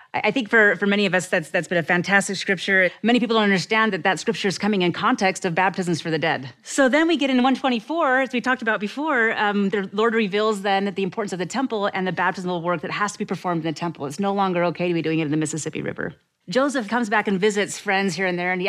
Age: 30-49